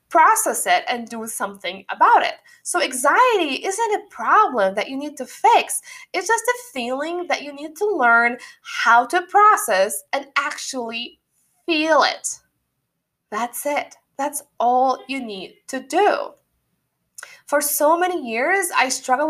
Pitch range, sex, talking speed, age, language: 235-350 Hz, female, 145 wpm, 20-39, English